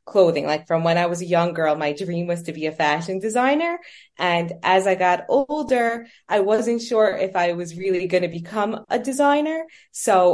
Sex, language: female, English